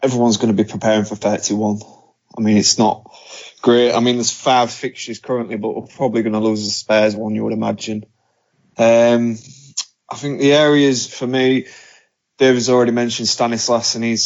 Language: English